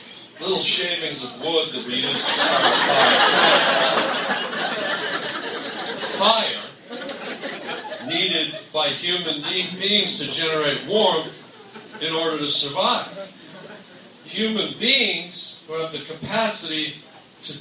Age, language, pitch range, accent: 40-59, English, 175-235 Hz, American